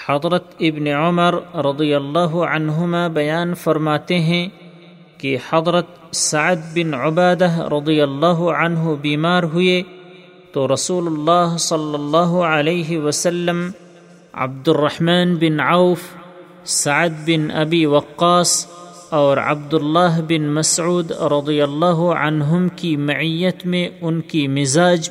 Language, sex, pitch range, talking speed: Urdu, male, 150-175 Hz, 110 wpm